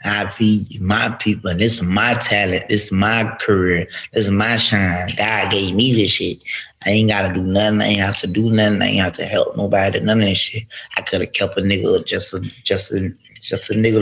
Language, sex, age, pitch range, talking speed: English, male, 20-39, 95-115 Hz, 230 wpm